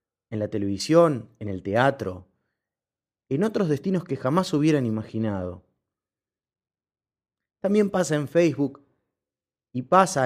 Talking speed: 110 wpm